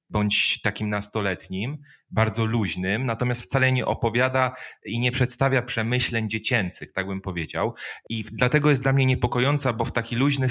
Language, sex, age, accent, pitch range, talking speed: Polish, male, 30-49, native, 100-115 Hz, 155 wpm